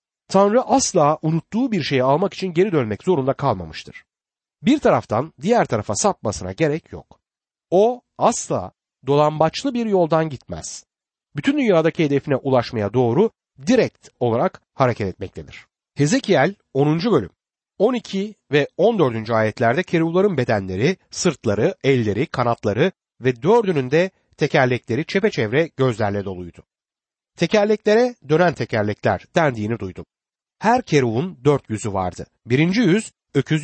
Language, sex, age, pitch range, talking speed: Turkish, male, 60-79, 120-185 Hz, 115 wpm